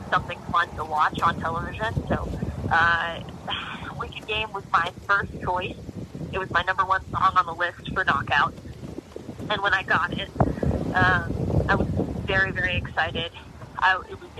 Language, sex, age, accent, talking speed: English, female, 30-49, American, 160 wpm